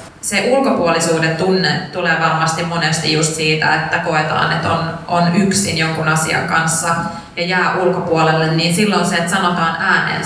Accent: native